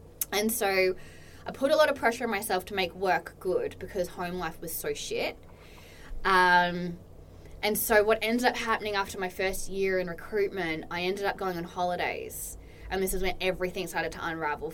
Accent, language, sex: Australian, English, female